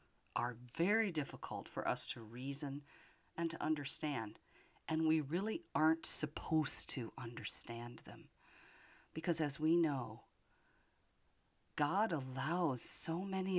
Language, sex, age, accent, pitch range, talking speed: English, female, 40-59, American, 115-165 Hz, 115 wpm